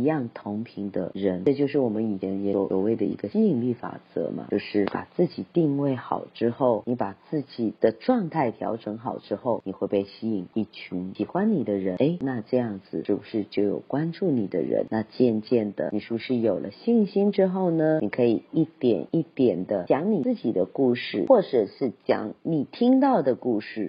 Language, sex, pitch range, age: Chinese, female, 110-165 Hz, 40-59